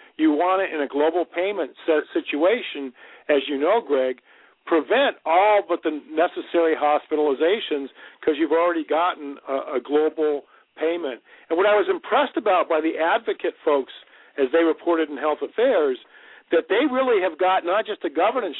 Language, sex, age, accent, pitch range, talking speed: English, male, 50-69, American, 150-205 Hz, 160 wpm